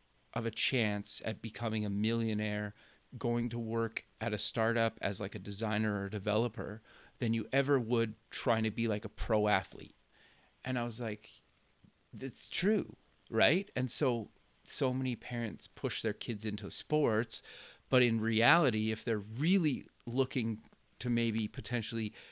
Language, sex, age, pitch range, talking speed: English, male, 30-49, 105-120 Hz, 155 wpm